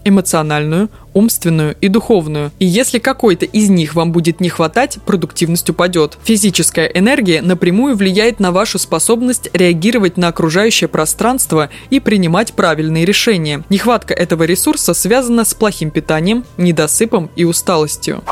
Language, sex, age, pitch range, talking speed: Russian, female, 20-39, 165-220 Hz, 130 wpm